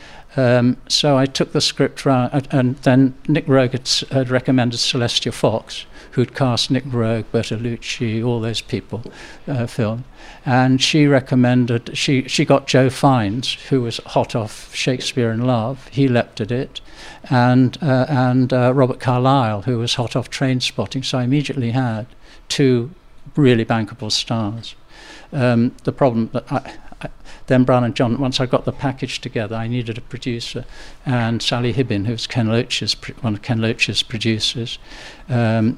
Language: English